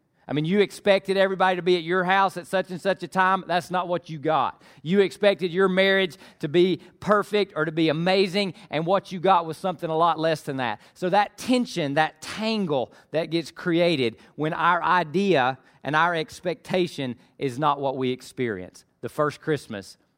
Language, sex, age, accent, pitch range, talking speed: English, male, 40-59, American, 135-180 Hz, 195 wpm